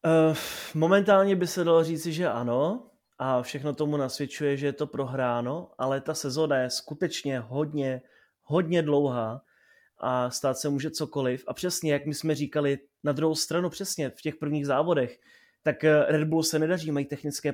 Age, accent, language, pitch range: 30-49, native, Czech, 140-160 Hz